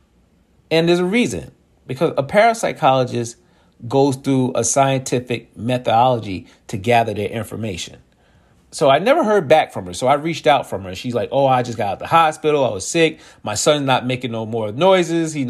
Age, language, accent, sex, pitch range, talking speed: 40-59, English, American, male, 120-160 Hz, 195 wpm